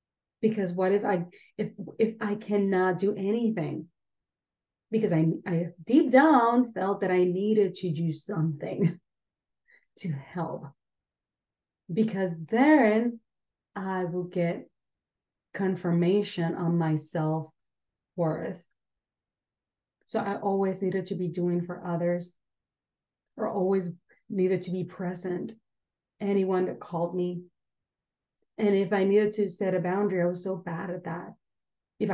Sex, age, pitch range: female, 30-49, 180-210 Hz